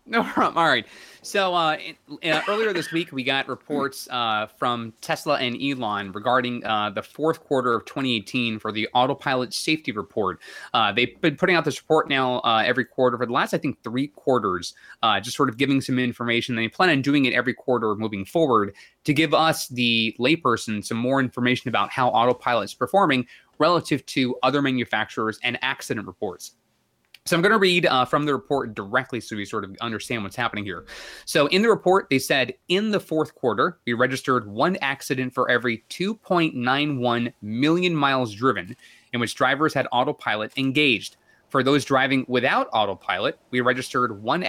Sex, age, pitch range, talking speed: male, 20-39, 120-145 Hz, 180 wpm